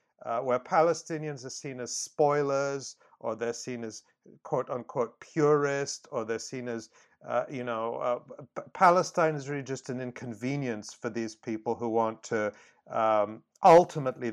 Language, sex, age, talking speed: English, male, 50-69, 145 wpm